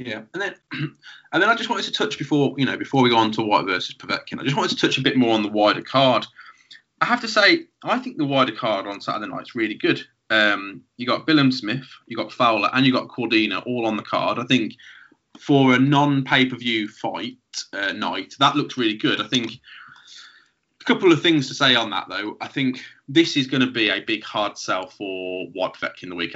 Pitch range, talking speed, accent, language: 115-160 Hz, 235 wpm, British, English